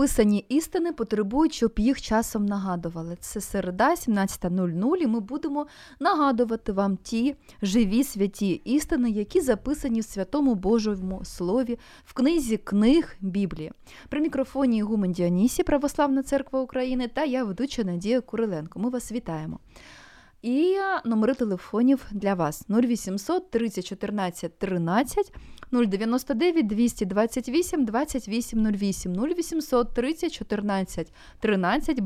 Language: Ukrainian